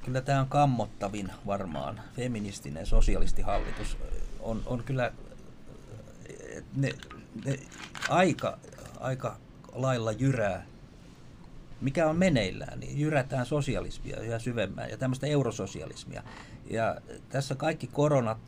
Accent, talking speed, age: native, 100 wpm, 50-69